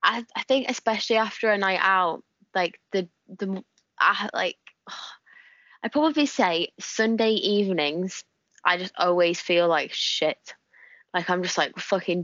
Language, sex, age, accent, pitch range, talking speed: English, female, 20-39, British, 170-195 Hz, 145 wpm